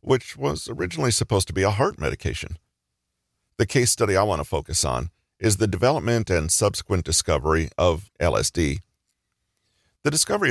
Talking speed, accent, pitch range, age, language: 155 wpm, American, 85-110 Hz, 50-69, English